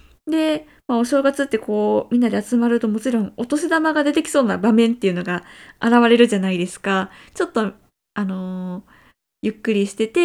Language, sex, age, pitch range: Japanese, female, 20-39, 205-280 Hz